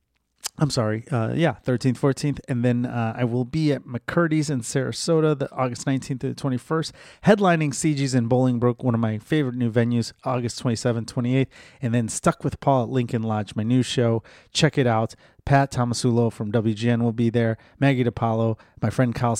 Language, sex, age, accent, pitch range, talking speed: English, male, 30-49, American, 120-145 Hz, 200 wpm